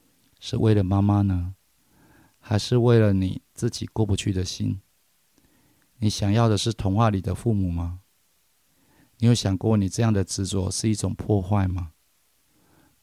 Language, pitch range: Chinese, 95-110 Hz